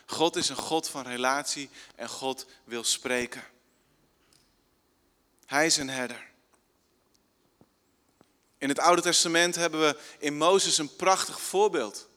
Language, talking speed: Dutch, 125 wpm